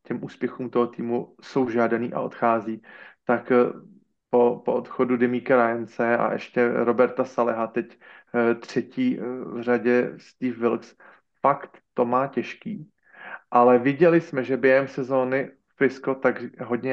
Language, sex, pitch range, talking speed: Slovak, male, 115-125 Hz, 130 wpm